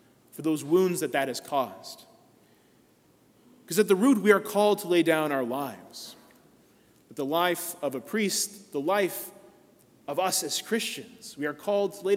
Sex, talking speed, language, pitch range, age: male, 175 wpm, English, 155-190 Hz, 30-49